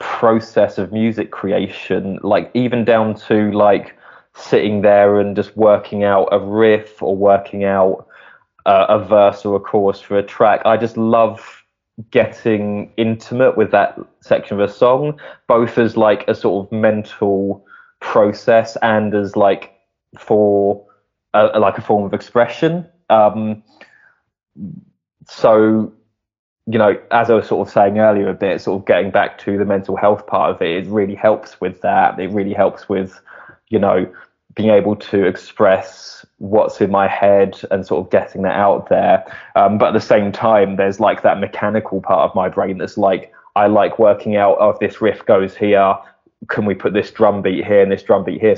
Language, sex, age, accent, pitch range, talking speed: English, male, 20-39, British, 100-110 Hz, 180 wpm